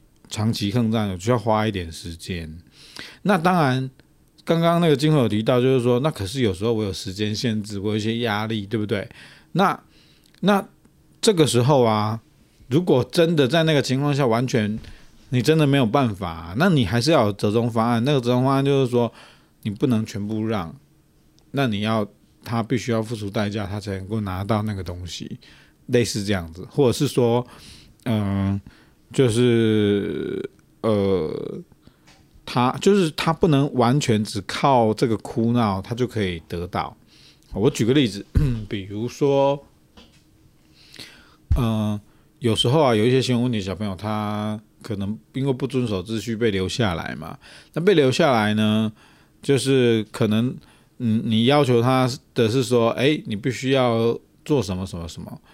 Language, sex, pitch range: Chinese, male, 105-130 Hz